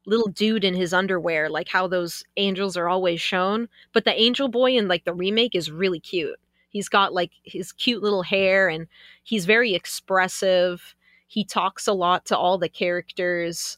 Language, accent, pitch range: English, American, 175-210 Hz